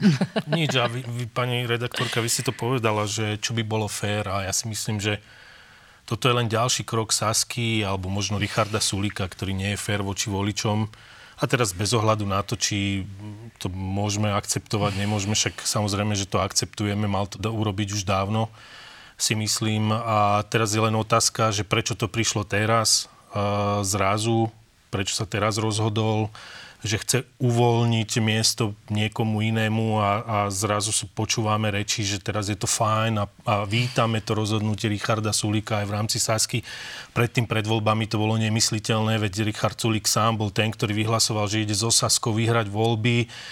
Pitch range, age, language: 105-115 Hz, 30-49, Slovak